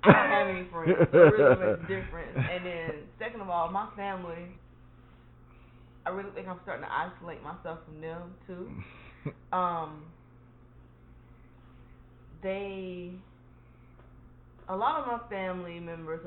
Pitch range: 125-170 Hz